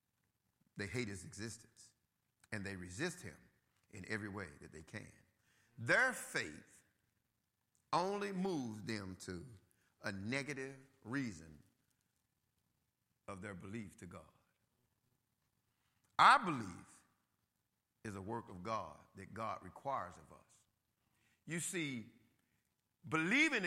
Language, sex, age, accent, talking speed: English, male, 50-69, American, 110 wpm